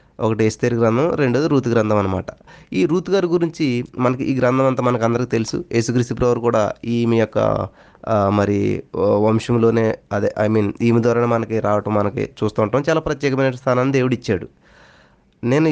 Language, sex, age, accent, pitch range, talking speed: Telugu, male, 20-39, native, 110-135 Hz, 155 wpm